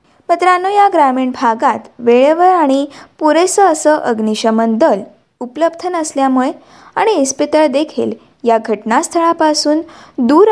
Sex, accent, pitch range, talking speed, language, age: female, native, 230-315 Hz, 105 wpm, Marathi, 20-39